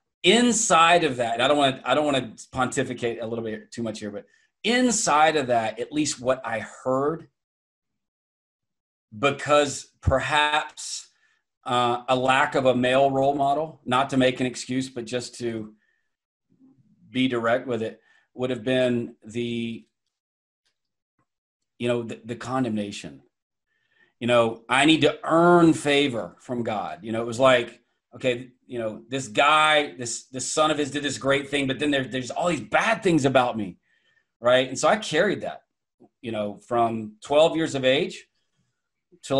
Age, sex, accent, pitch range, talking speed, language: 30-49, male, American, 120-145 Hz, 165 wpm, English